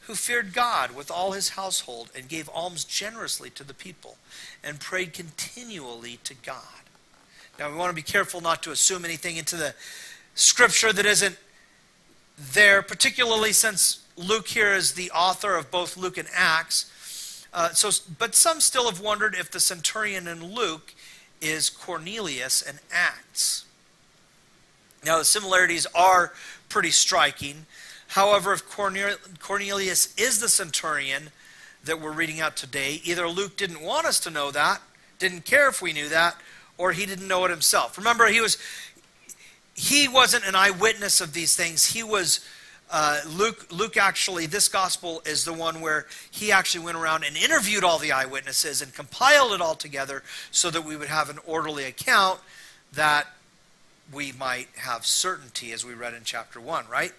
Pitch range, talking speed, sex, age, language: 155-200 Hz, 165 wpm, male, 40-59, English